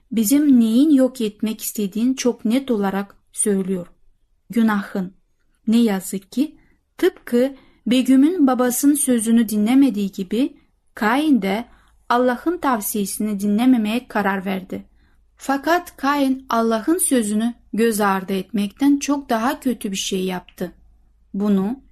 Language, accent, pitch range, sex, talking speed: Turkish, native, 200-265 Hz, female, 110 wpm